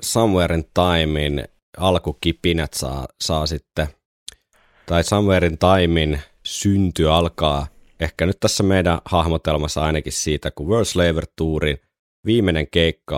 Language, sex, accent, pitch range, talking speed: Finnish, male, native, 75-85 Hz, 100 wpm